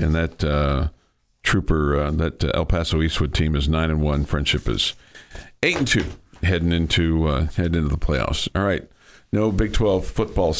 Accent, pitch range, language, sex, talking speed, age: American, 80-90 Hz, English, male, 185 wpm, 50-69